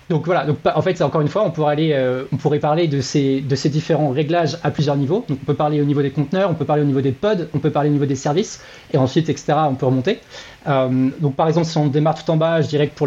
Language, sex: French, male